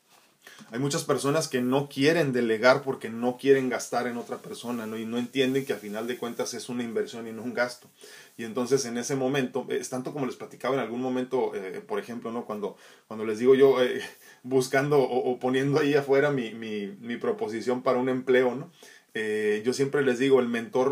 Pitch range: 120-140 Hz